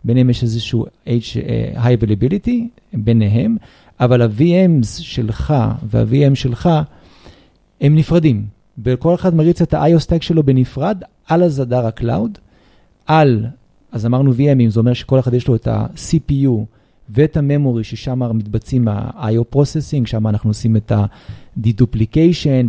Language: Hebrew